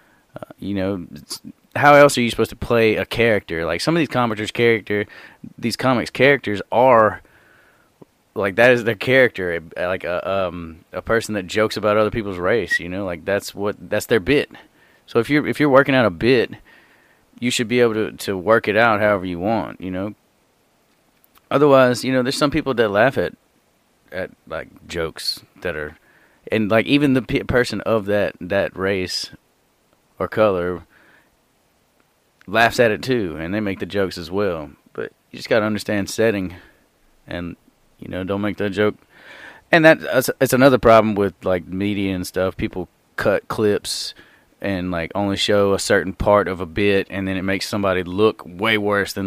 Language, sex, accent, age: English, male, American, 30-49